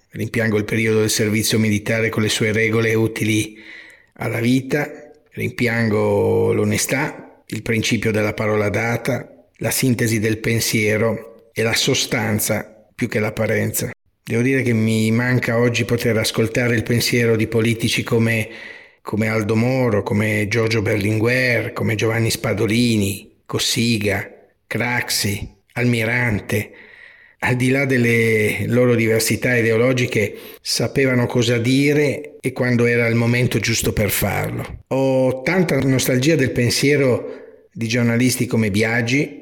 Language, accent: Italian, native